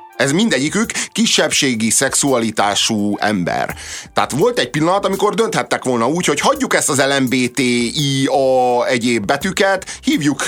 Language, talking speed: Hungarian, 120 wpm